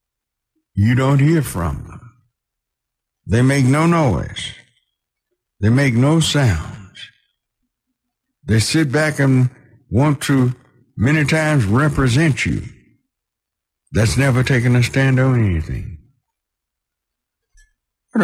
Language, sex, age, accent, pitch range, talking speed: English, male, 60-79, American, 100-135 Hz, 100 wpm